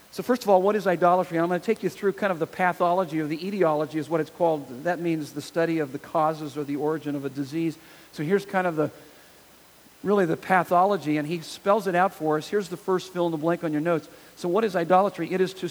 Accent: American